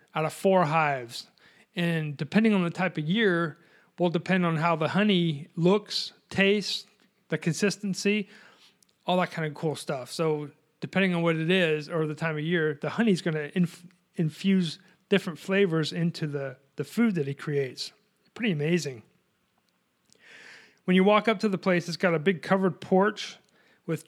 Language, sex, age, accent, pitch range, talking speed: English, male, 40-59, American, 155-190 Hz, 170 wpm